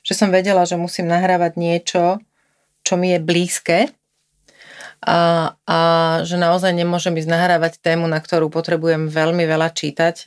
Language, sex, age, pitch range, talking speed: Slovak, female, 30-49, 160-180 Hz, 145 wpm